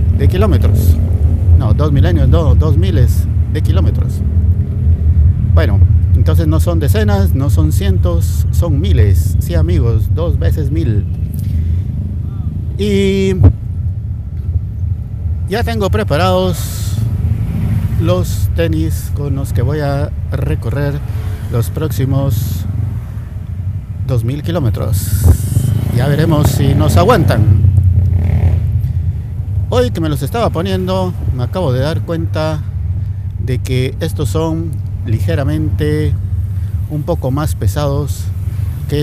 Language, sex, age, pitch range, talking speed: Spanish, male, 50-69, 90-105 Hz, 105 wpm